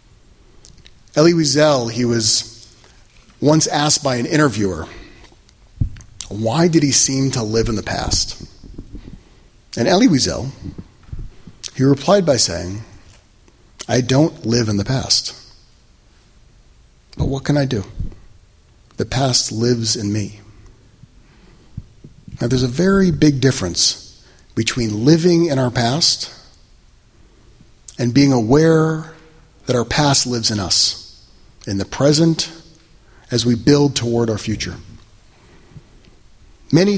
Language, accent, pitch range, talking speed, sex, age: English, American, 115-155 Hz, 115 wpm, male, 40-59